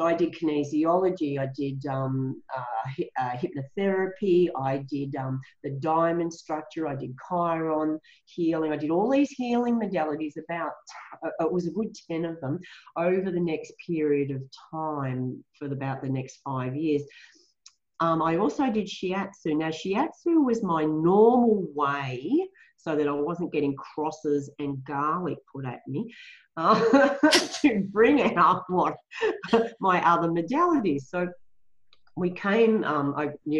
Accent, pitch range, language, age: Australian, 150-210 Hz, English, 40-59